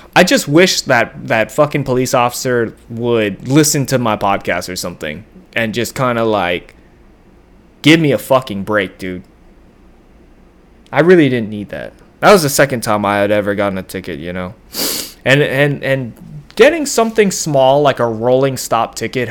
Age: 20-39